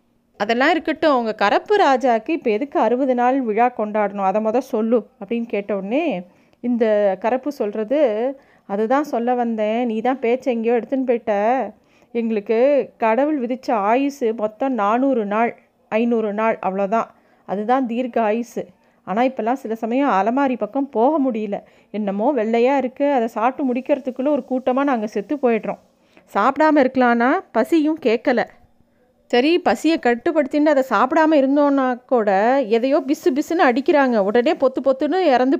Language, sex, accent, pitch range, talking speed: Tamil, female, native, 225-280 Hz, 130 wpm